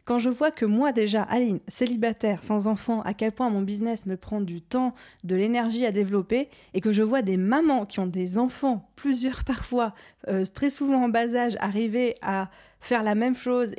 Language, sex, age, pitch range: French, female, 20-39, 200-245 Hz